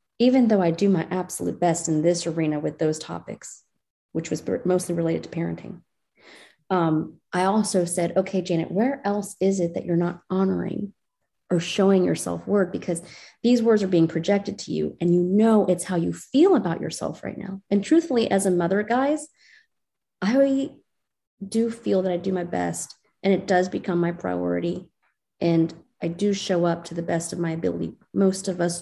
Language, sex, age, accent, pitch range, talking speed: English, female, 30-49, American, 165-205 Hz, 185 wpm